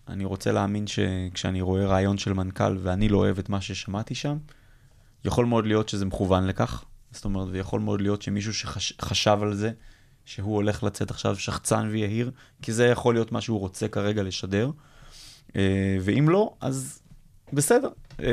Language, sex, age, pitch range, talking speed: Hebrew, male, 20-39, 100-120 Hz, 160 wpm